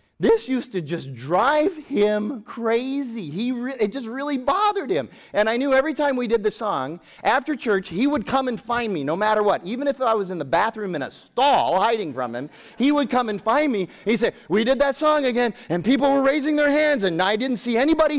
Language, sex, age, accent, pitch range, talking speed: English, male, 30-49, American, 155-250 Hz, 235 wpm